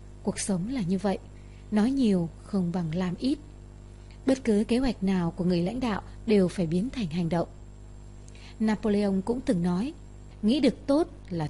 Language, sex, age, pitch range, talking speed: Vietnamese, female, 20-39, 180-240 Hz, 175 wpm